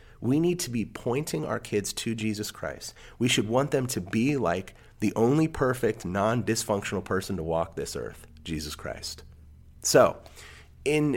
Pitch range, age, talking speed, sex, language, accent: 95-120 Hz, 30-49, 160 wpm, male, English, American